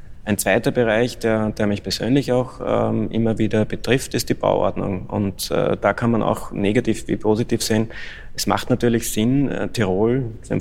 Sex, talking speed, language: male, 185 wpm, German